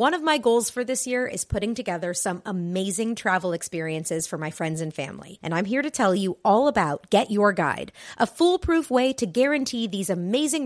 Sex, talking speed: female, 210 wpm